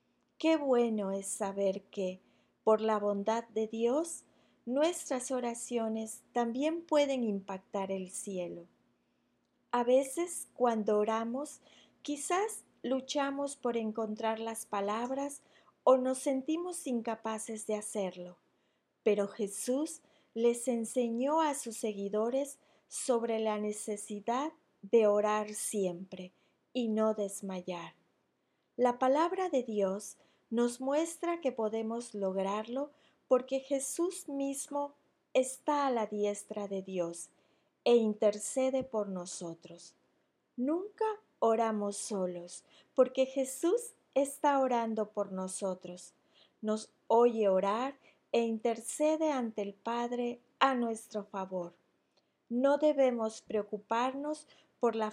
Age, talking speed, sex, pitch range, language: 30-49, 105 wpm, female, 205-270 Hz, Spanish